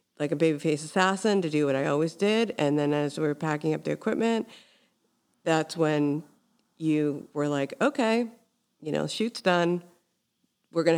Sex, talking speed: female, 175 wpm